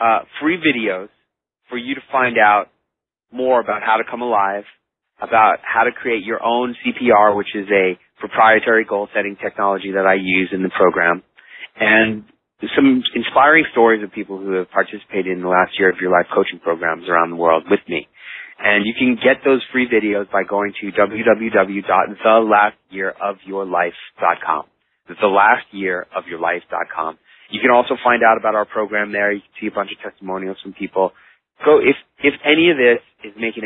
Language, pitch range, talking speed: English, 95-115 Hz, 170 wpm